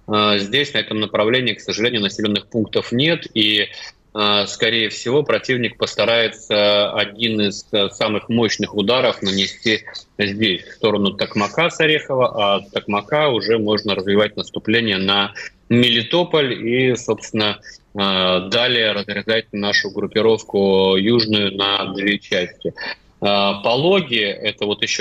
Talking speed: 115 wpm